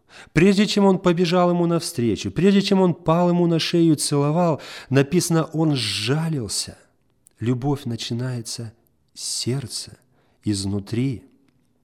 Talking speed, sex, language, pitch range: 115 wpm, male, Russian, 110-155 Hz